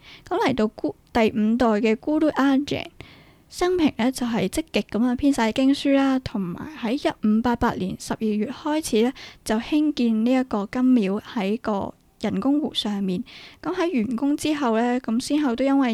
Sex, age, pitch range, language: female, 10-29, 210-260 Hz, Chinese